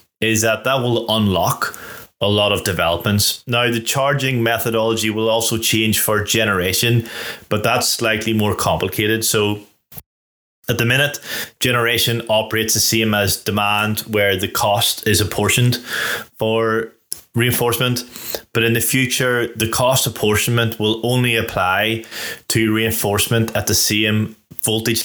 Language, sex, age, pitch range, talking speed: English, male, 20-39, 100-115 Hz, 135 wpm